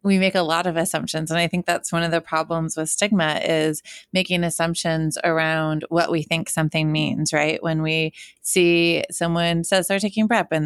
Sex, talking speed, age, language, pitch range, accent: female, 195 wpm, 20-39, English, 160-180 Hz, American